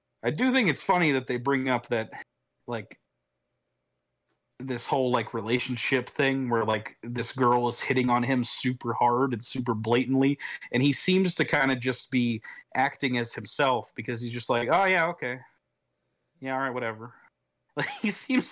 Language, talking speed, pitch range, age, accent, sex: English, 175 wpm, 100-135 Hz, 30-49, American, male